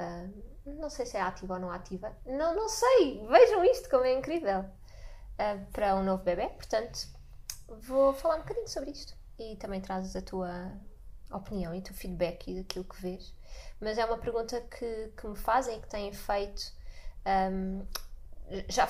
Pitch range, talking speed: 195-250 Hz, 180 wpm